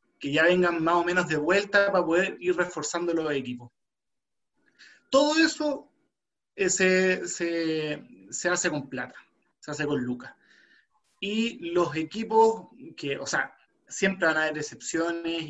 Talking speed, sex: 145 wpm, male